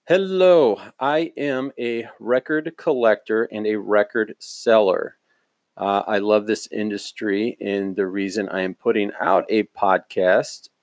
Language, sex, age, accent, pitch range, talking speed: English, male, 40-59, American, 100-115 Hz, 135 wpm